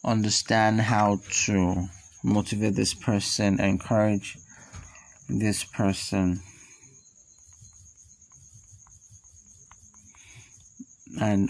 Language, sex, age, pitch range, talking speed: English, male, 20-39, 95-110 Hz, 50 wpm